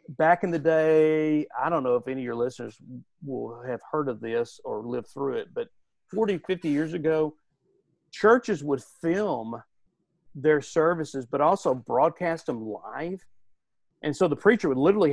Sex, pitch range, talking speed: male, 135-165 Hz, 165 wpm